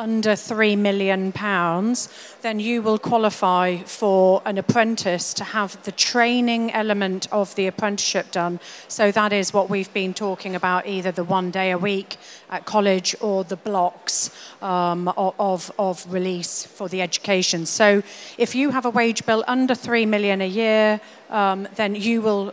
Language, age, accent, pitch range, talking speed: English, 40-59, British, 185-215 Hz, 165 wpm